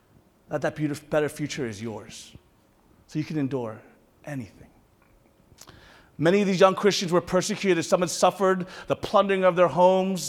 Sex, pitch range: male, 170-220 Hz